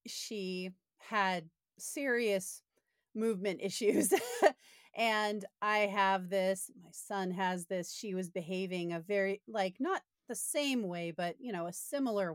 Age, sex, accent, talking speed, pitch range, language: 30-49, female, American, 135 wpm, 185-225 Hz, English